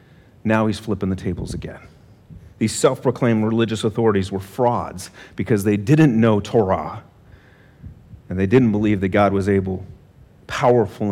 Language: English